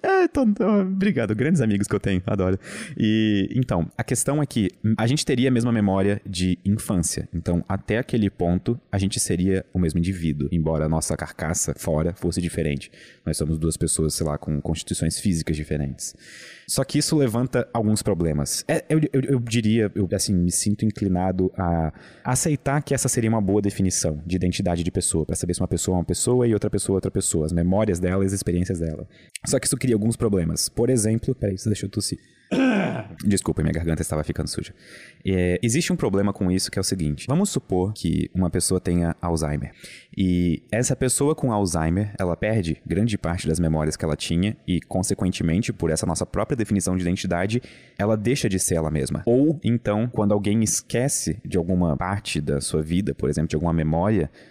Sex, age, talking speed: male, 20-39, 200 wpm